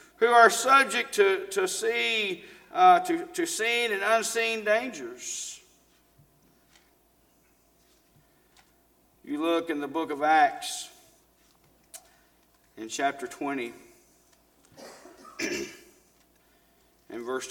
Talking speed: 85 wpm